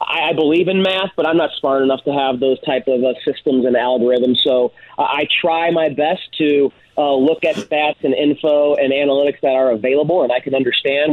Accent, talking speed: American, 215 wpm